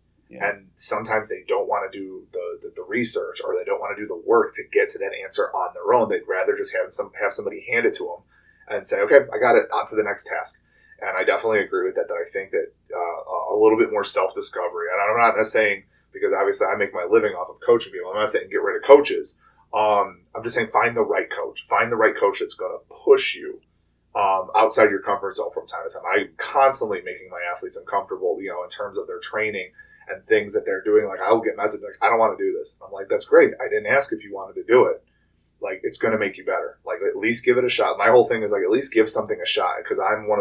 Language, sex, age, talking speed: English, male, 20-39, 270 wpm